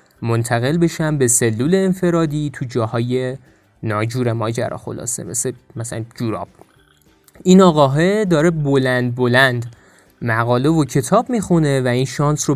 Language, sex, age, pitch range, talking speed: Persian, male, 20-39, 125-190 Hz, 130 wpm